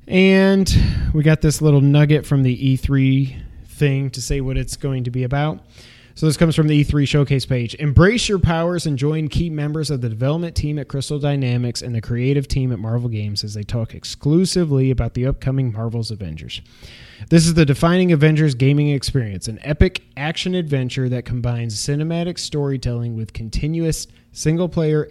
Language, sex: English, male